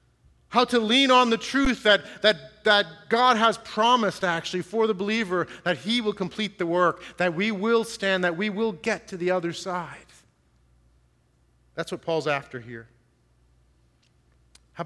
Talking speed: 160 wpm